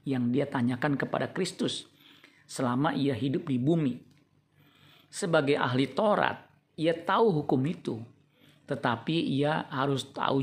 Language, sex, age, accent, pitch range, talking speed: Indonesian, male, 50-69, native, 135-160 Hz, 120 wpm